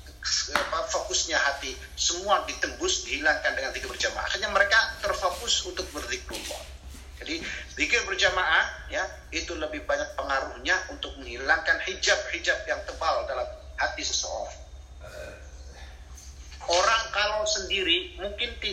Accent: native